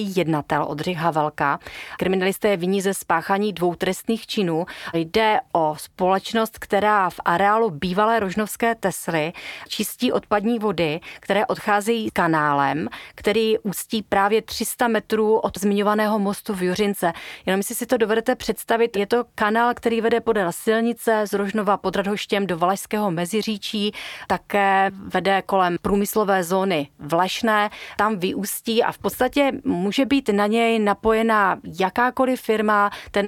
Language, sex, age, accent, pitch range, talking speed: Czech, female, 30-49, native, 175-220 Hz, 140 wpm